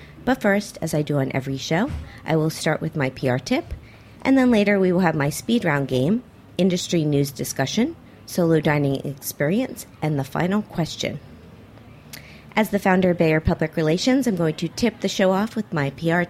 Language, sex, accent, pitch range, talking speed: English, female, American, 145-210 Hz, 190 wpm